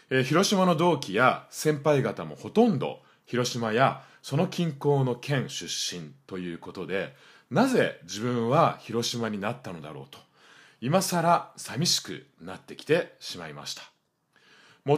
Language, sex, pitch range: Japanese, male, 125-180 Hz